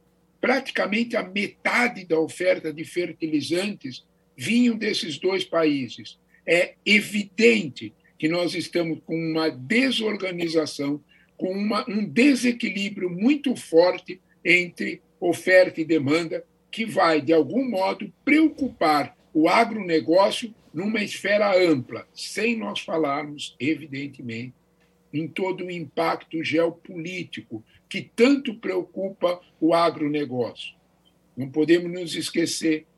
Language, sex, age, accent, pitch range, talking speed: Portuguese, male, 60-79, Brazilian, 155-225 Hz, 105 wpm